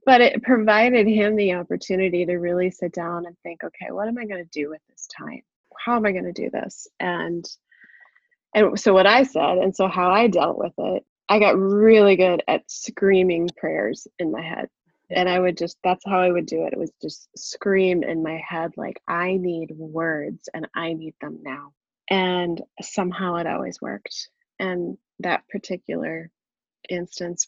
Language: English